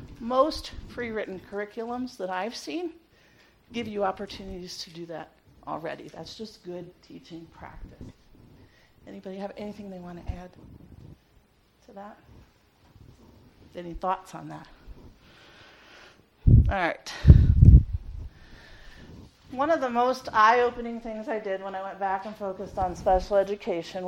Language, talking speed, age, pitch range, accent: English, 125 wpm, 40-59, 180-240 Hz, American